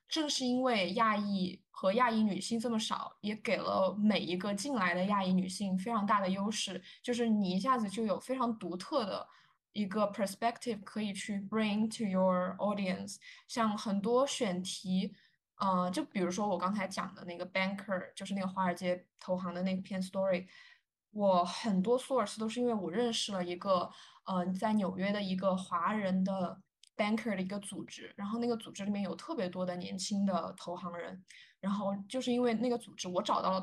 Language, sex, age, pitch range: Chinese, female, 20-39, 185-225 Hz